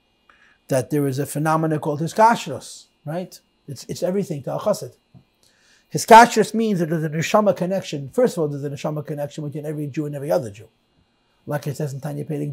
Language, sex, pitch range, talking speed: English, male, 145-185 Hz, 185 wpm